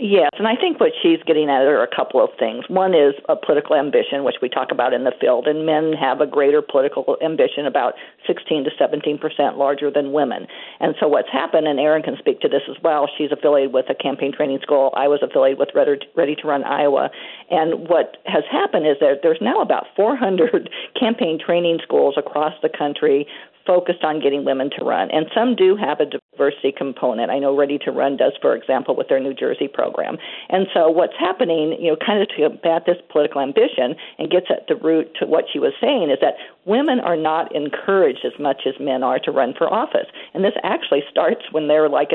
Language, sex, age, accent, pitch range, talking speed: English, female, 50-69, American, 145-225 Hz, 220 wpm